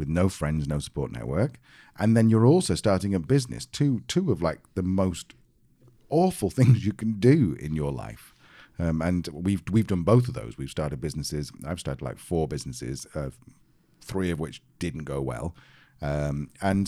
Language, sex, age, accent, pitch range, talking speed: English, male, 40-59, British, 75-110 Hz, 185 wpm